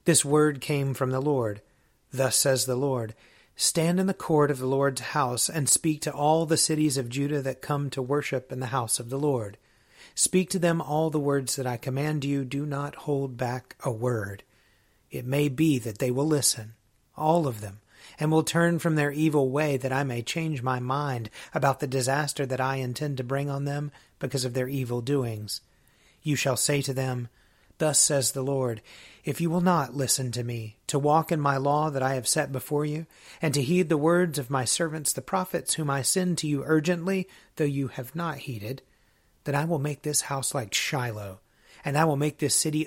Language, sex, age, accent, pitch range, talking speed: English, male, 40-59, American, 130-155 Hz, 215 wpm